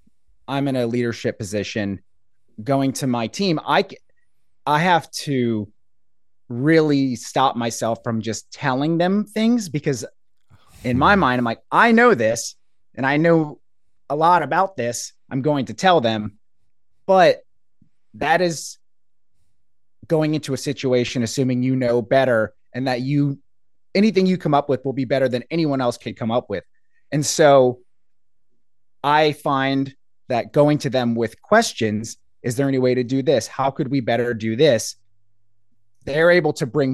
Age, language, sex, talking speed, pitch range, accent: 30-49, English, male, 160 wpm, 115-150 Hz, American